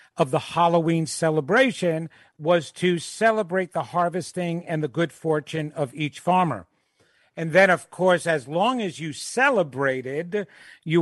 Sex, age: male, 50-69